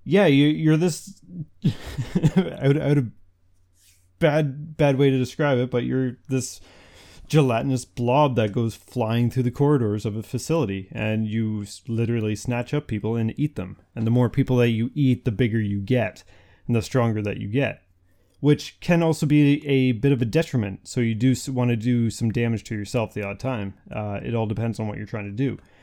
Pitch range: 100-130 Hz